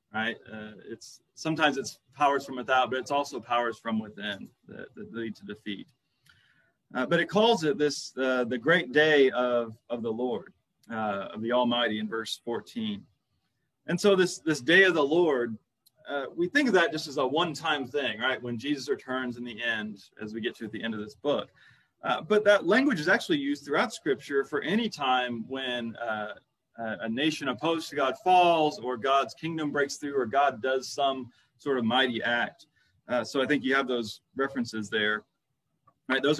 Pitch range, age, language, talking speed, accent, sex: 120-155 Hz, 30-49, English, 195 wpm, American, male